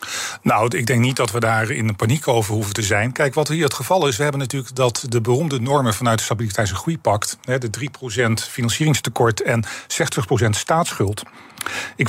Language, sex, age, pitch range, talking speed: Dutch, male, 40-59, 115-145 Hz, 190 wpm